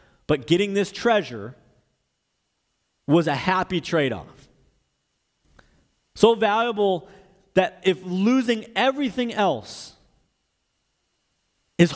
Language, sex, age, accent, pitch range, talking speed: English, male, 30-49, American, 150-205 Hz, 80 wpm